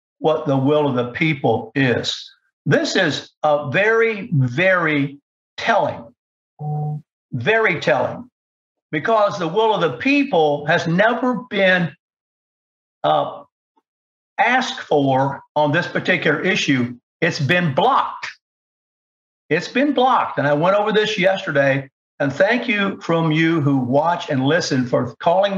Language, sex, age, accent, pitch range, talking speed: English, male, 60-79, American, 150-230 Hz, 125 wpm